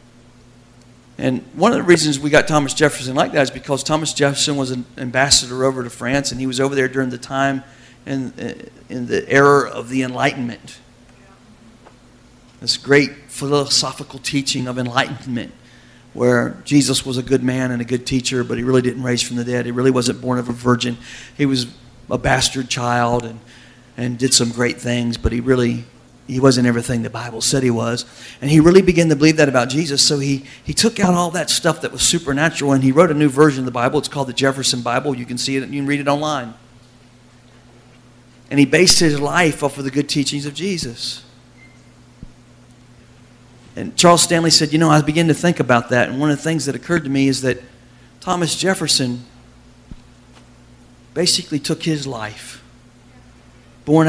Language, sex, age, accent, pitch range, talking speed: English, male, 40-59, American, 120-145 Hz, 195 wpm